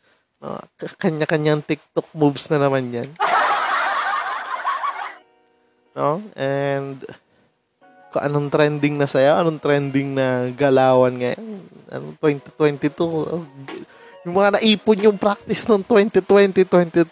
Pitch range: 130-170 Hz